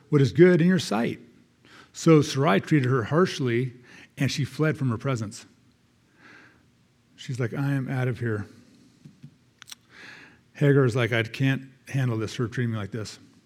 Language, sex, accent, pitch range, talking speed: English, male, American, 120-165 Hz, 155 wpm